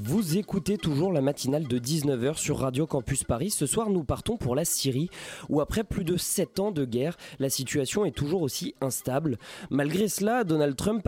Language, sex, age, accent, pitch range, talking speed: French, male, 20-39, French, 130-185 Hz, 195 wpm